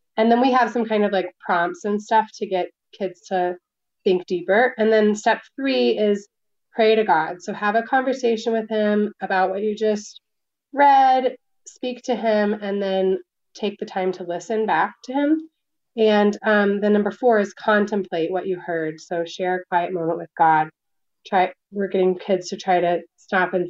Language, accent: English, American